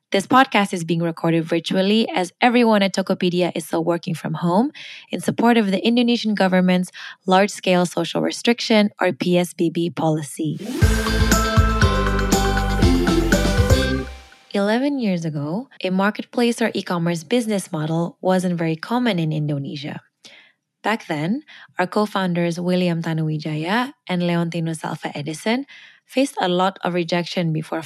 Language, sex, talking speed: Indonesian, female, 125 wpm